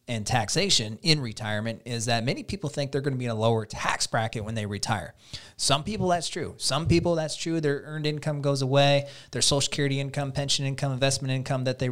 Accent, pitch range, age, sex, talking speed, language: American, 120-150 Hz, 30-49, male, 220 wpm, English